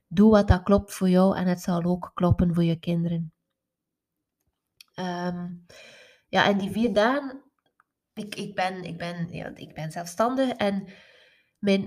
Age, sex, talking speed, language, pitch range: 20-39, female, 125 wpm, Dutch, 180-220 Hz